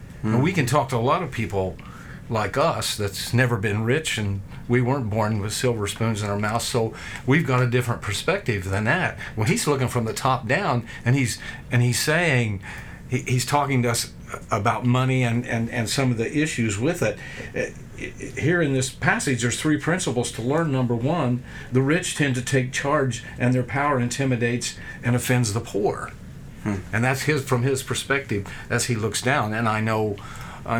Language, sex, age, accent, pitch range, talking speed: English, male, 50-69, American, 110-130 Hz, 195 wpm